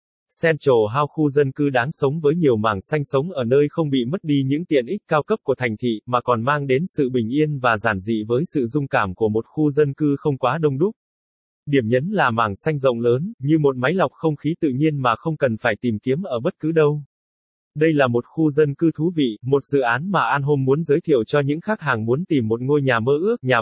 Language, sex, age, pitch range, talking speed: Vietnamese, male, 20-39, 120-155 Hz, 260 wpm